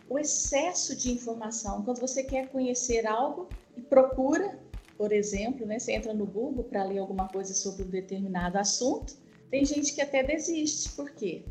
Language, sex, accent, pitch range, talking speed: Portuguese, female, Brazilian, 210-275 Hz, 170 wpm